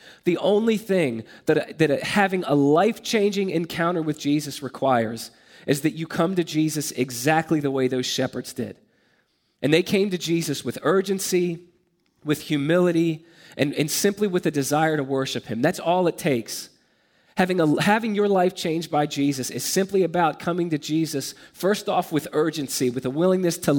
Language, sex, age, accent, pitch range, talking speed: English, male, 30-49, American, 140-175 Hz, 170 wpm